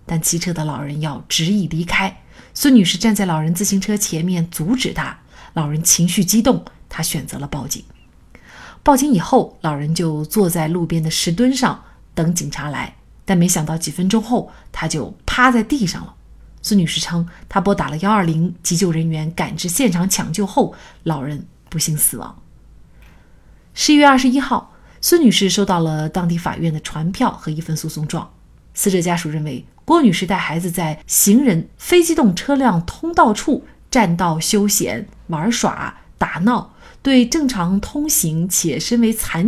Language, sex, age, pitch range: Chinese, female, 30-49, 160-225 Hz